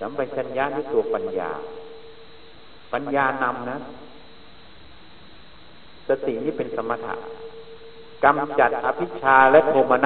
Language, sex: Thai, male